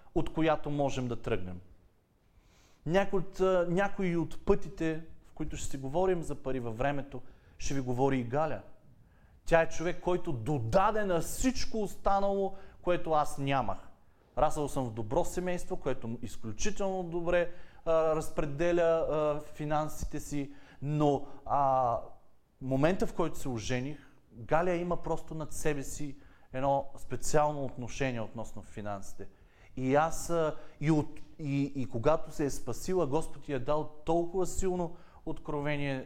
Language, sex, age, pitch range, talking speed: Bulgarian, male, 30-49, 120-160 Hz, 135 wpm